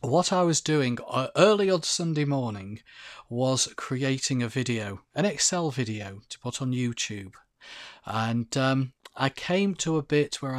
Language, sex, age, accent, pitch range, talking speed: English, male, 40-59, British, 120-150 Hz, 155 wpm